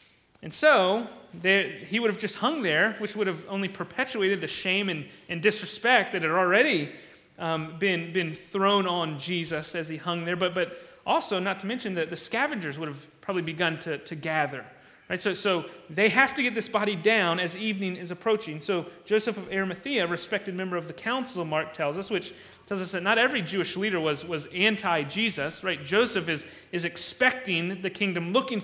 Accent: American